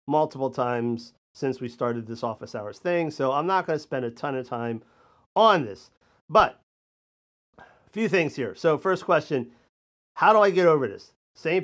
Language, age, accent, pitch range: English, 40-59, American, 130-160 Hz